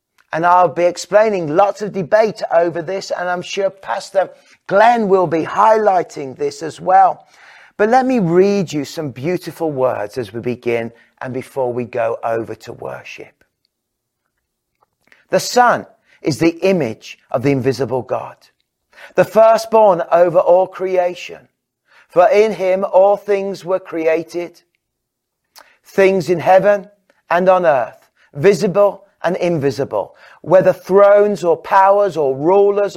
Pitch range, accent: 160-200 Hz, British